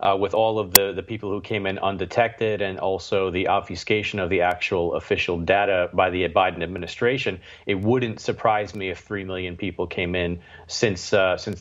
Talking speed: 190 wpm